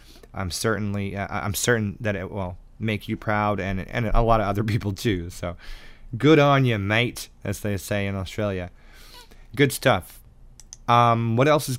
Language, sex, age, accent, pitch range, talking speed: English, male, 20-39, American, 100-125 Hz, 175 wpm